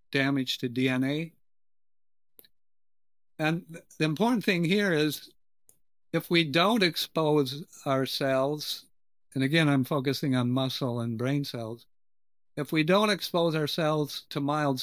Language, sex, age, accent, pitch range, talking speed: English, male, 60-79, American, 125-155 Hz, 120 wpm